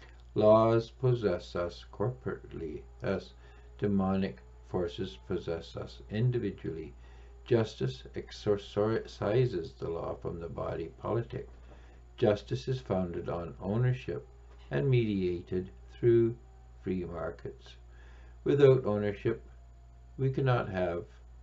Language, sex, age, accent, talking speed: English, male, 60-79, American, 90 wpm